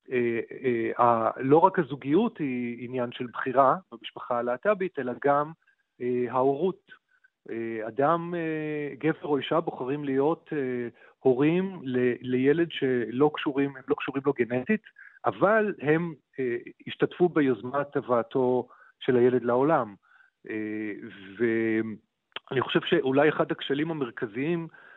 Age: 40-59